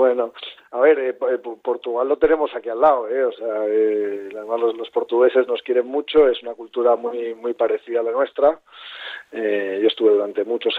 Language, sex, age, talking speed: Spanish, male, 40-59, 200 wpm